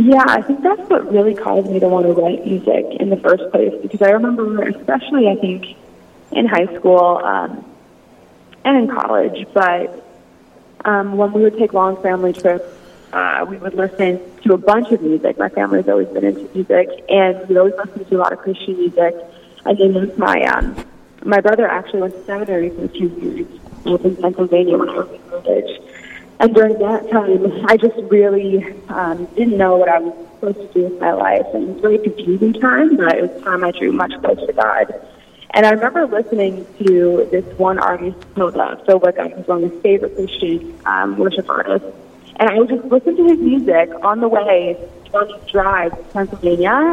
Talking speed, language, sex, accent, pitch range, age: 195 wpm, English, female, American, 185-230 Hz, 20-39